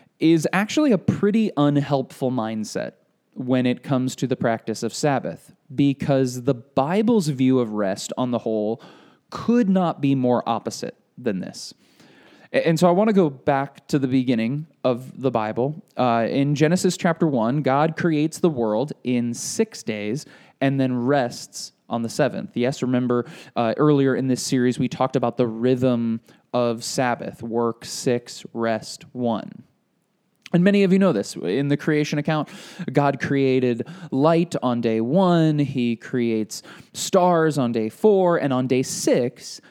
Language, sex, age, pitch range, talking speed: English, male, 20-39, 125-175 Hz, 160 wpm